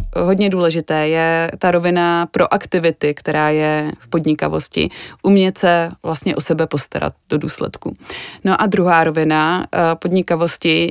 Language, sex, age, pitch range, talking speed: Czech, female, 20-39, 160-190 Hz, 130 wpm